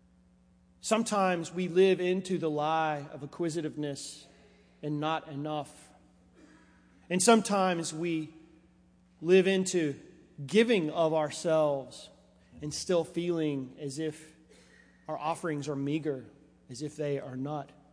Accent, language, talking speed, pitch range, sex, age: American, English, 110 wpm, 120-195 Hz, male, 40-59